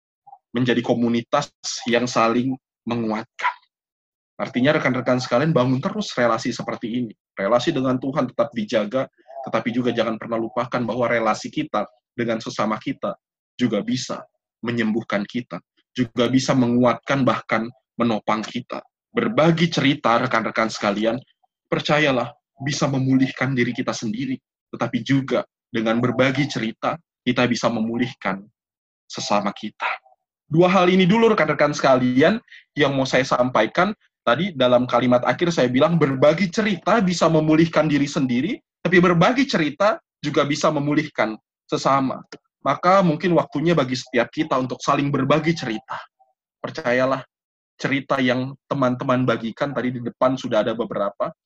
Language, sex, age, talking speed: Indonesian, male, 20-39, 125 wpm